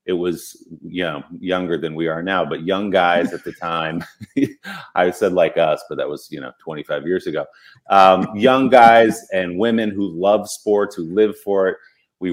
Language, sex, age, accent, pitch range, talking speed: English, male, 30-49, American, 85-100 Hz, 195 wpm